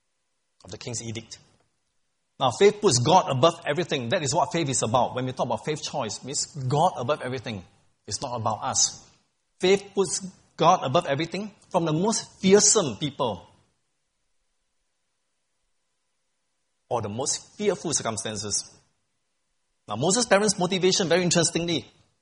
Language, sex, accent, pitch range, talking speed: English, male, Malaysian, 130-185 Hz, 140 wpm